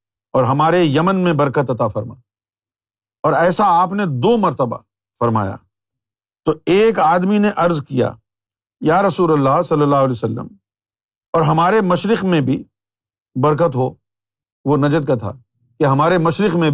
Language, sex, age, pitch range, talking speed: Urdu, male, 50-69, 115-175 Hz, 150 wpm